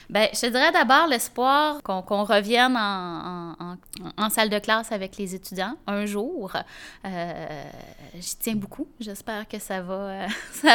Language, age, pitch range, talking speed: French, 20-39, 185-240 Hz, 160 wpm